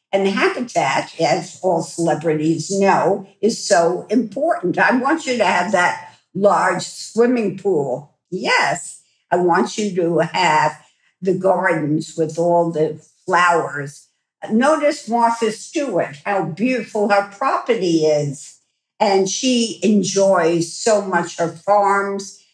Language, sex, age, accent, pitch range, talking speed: English, female, 60-79, American, 175-220 Hz, 120 wpm